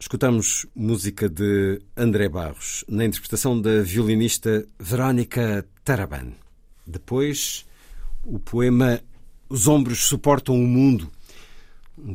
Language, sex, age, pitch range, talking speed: Portuguese, male, 50-69, 95-125 Hz, 100 wpm